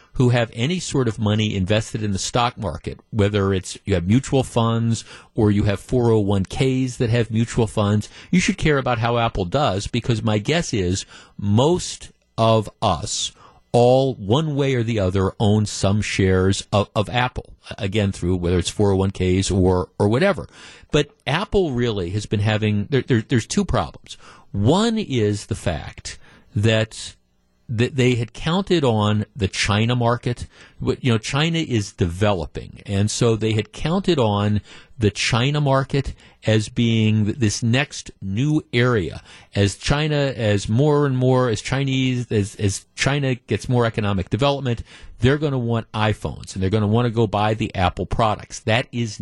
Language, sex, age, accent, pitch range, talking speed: English, male, 50-69, American, 100-125 Hz, 165 wpm